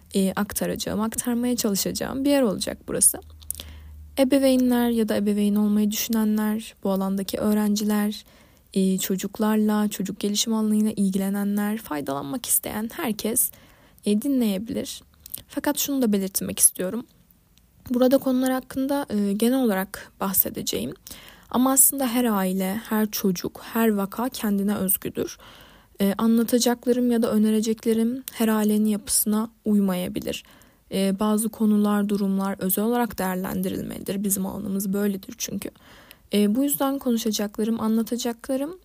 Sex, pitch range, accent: female, 200-250 Hz, native